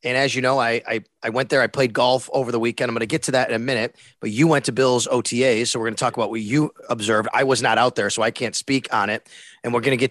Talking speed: 325 wpm